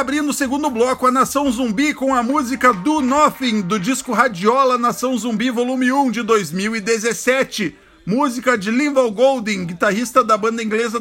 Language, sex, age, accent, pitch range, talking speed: Portuguese, male, 50-69, Brazilian, 215-260 Hz, 160 wpm